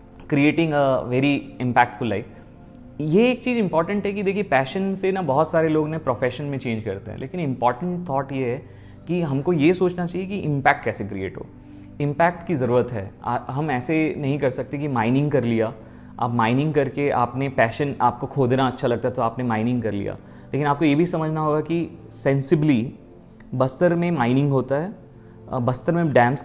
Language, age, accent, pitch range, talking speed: Hindi, 30-49, native, 125-165 Hz, 190 wpm